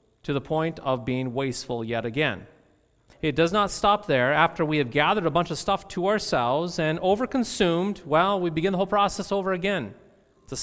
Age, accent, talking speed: 40-59, American, 190 wpm